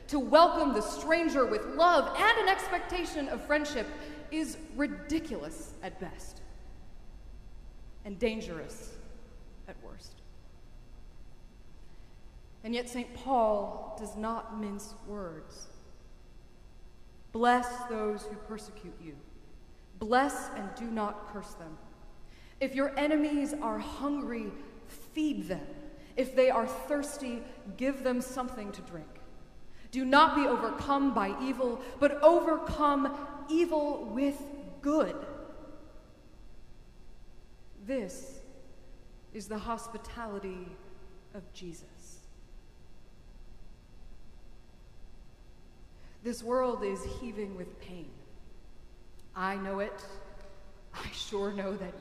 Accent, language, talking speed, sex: American, English, 95 wpm, female